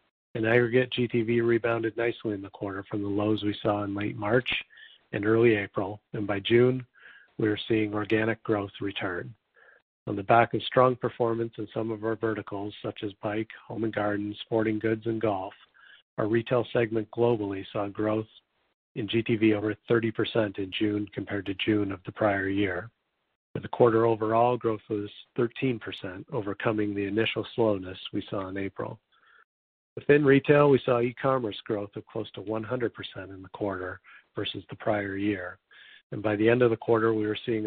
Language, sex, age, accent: English, male, 50-69, American